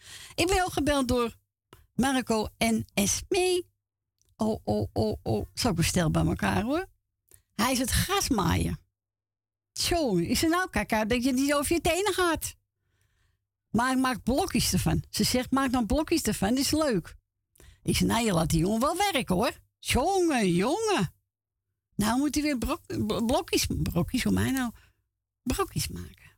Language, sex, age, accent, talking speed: Dutch, female, 60-79, Dutch, 170 wpm